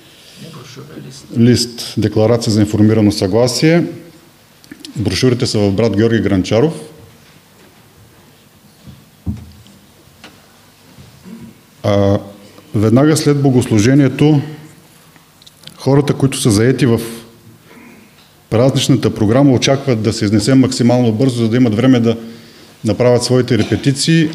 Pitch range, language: 105-135 Hz, English